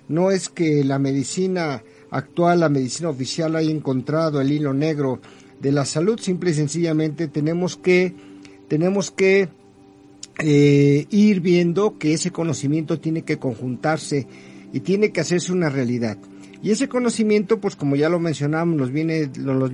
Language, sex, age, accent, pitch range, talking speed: Spanish, male, 50-69, Mexican, 135-165 Hz, 150 wpm